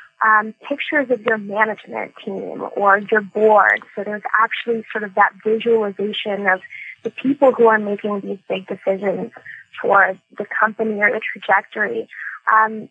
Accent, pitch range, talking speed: American, 210-235 Hz, 150 wpm